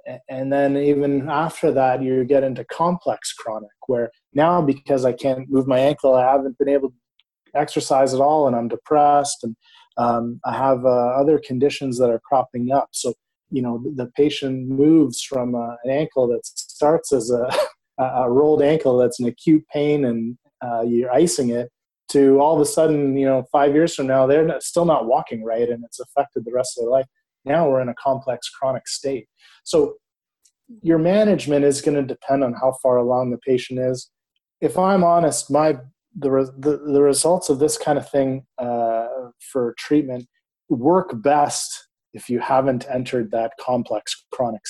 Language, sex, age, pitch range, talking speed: English, male, 30-49, 125-150 Hz, 185 wpm